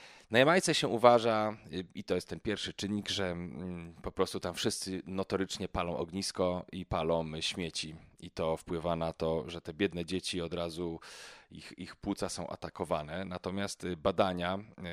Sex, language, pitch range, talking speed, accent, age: male, Polish, 80-95 Hz, 155 wpm, native, 30-49